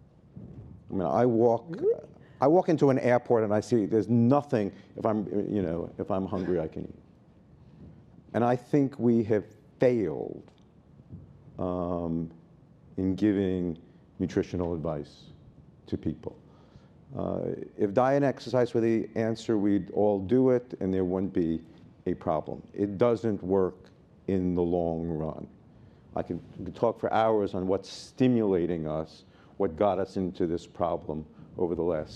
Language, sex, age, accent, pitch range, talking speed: English, male, 50-69, American, 90-115 Hz, 150 wpm